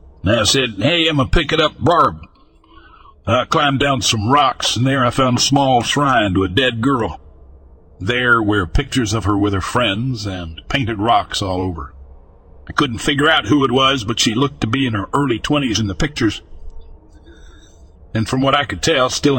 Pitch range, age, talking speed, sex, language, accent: 80-135 Hz, 60-79, 200 wpm, male, English, American